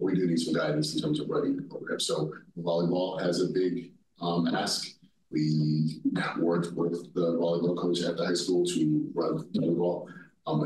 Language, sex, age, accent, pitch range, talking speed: English, male, 40-59, American, 80-90 Hz, 185 wpm